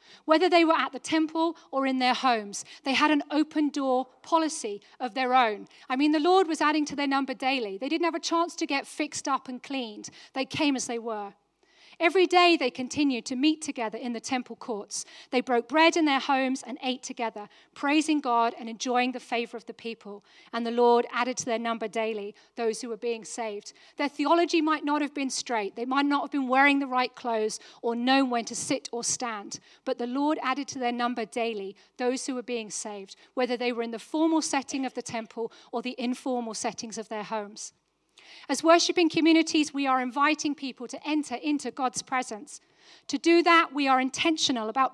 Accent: British